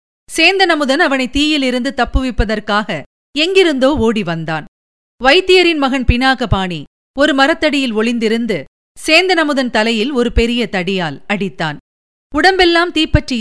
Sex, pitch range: female, 200-290 Hz